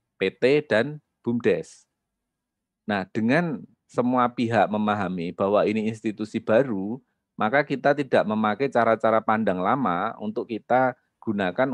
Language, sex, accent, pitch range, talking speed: Indonesian, male, native, 95-120 Hz, 110 wpm